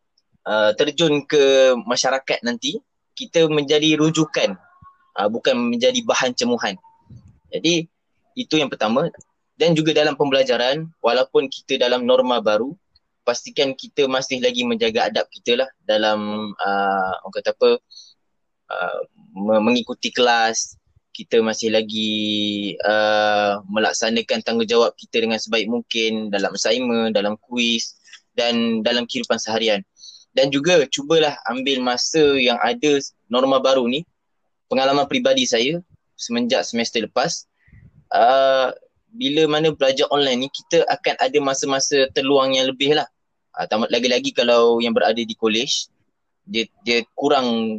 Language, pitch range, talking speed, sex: Malay, 115-175 Hz, 125 wpm, male